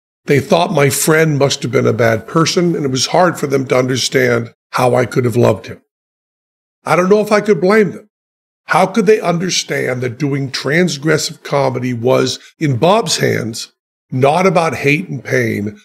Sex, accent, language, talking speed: male, American, English, 185 wpm